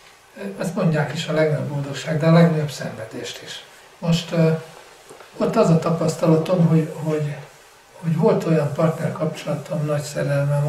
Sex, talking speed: male, 140 wpm